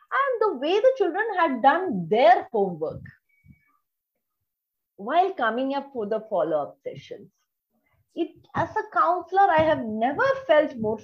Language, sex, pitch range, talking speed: English, female, 240-340 Hz, 130 wpm